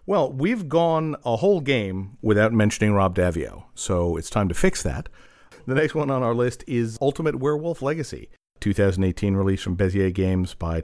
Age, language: 50-69, English